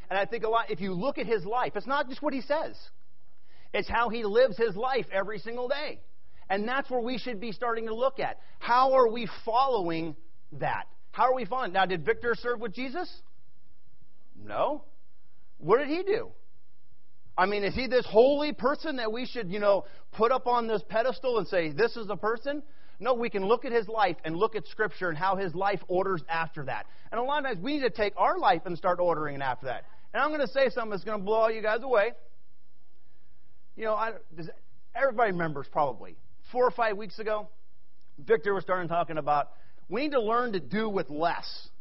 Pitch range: 190-255 Hz